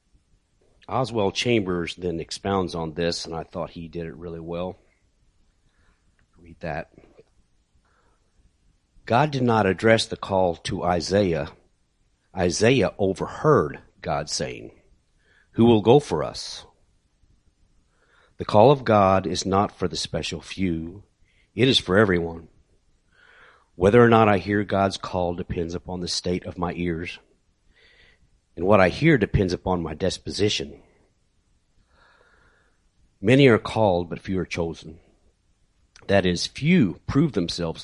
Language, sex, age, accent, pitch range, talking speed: English, male, 50-69, American, 85-105 Hz, 130 wpm